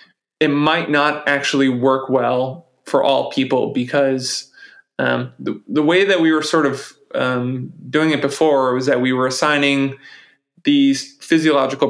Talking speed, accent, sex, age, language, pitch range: 150 wpm, American, male, 20-39, English, 130-145 Hz